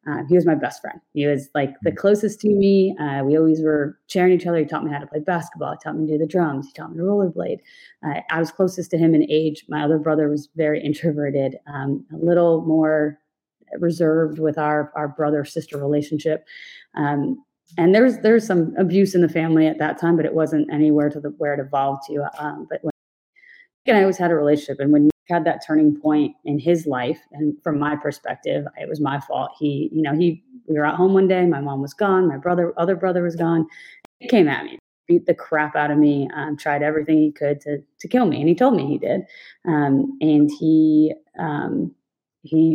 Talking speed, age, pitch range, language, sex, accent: 225 wpm, 30-49, 145-170 Hz, English, female, American